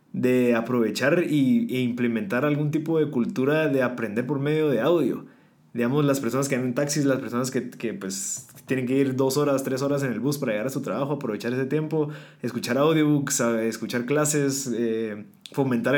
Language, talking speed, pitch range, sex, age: Spanish, 185 wpm, 125-155 Hz, male, 20-39